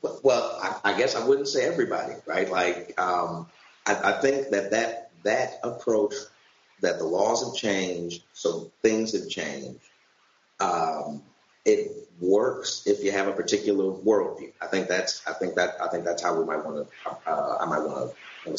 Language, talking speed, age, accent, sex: English, 180 wpm, 30-49, American, male